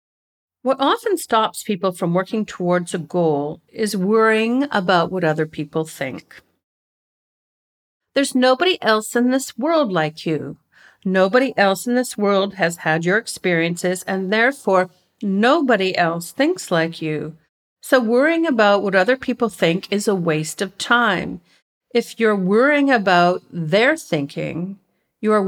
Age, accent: 50-69, American